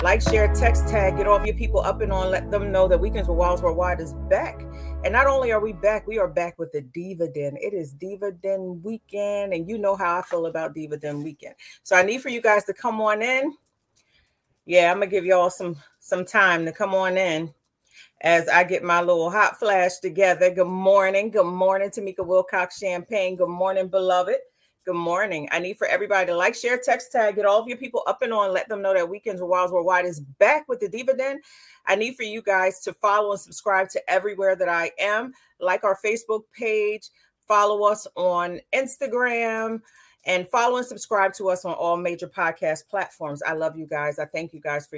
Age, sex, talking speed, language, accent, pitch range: 30-49, female, 220 wpm, English, American, 170-215 Hz